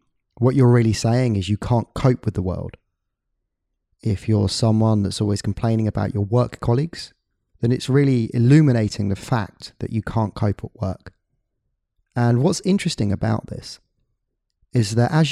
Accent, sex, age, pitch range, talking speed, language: British, male, 30-49, 100-125 Hz, 160 wpm, English